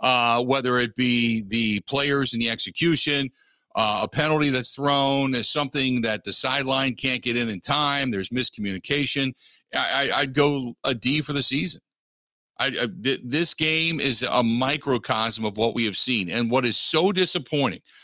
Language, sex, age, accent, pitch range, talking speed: English, male, 50-69, American, 120-150 Hz, 175 wpm